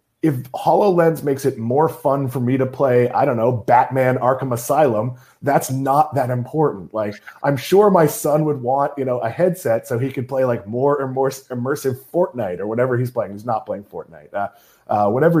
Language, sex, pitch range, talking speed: English, male, 125-170 Hz, 205 wpm